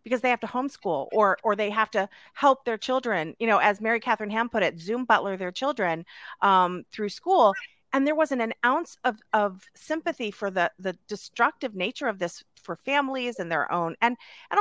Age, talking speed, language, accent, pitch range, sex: 40-59, 205 wpm, English, American, 190-260 Hz, female